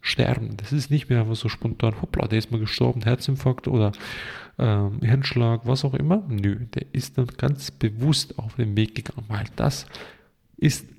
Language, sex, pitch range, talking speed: German, male, 110-130 Hz, 180 wpm